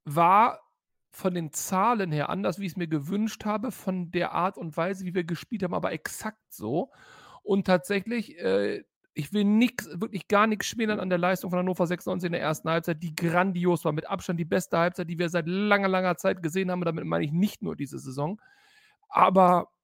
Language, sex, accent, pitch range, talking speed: German, male, German, 170-205 Hz, 210 wpm